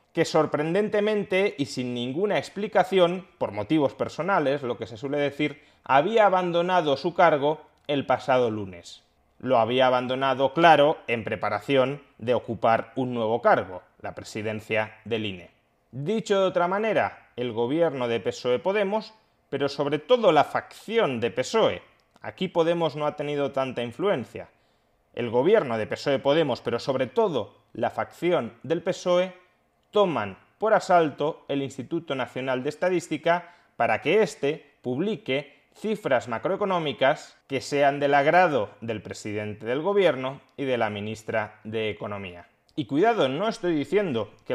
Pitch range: 115-170 Hz